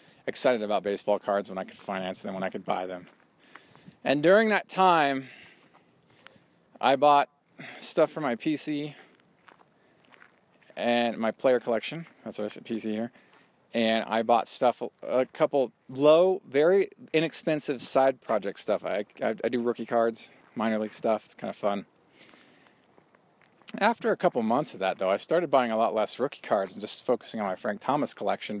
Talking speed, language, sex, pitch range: 170 wpm, English, male, 115-165 Hz